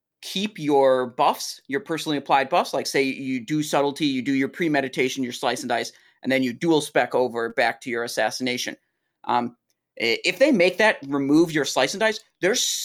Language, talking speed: English, 190 wpm